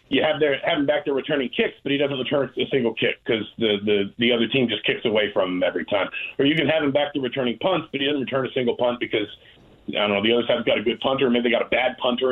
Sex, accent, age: male, American, 40-59